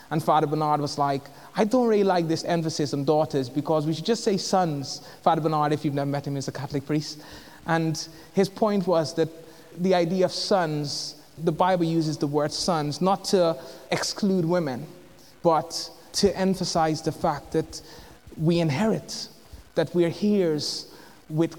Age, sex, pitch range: 20-39, male, 155-180 Hz